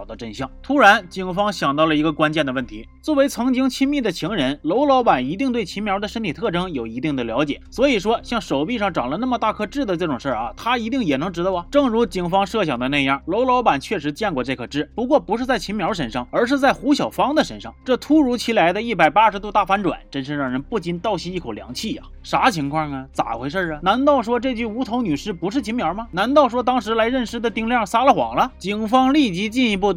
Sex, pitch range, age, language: male, 160-255 Hz, 30-49, Chinese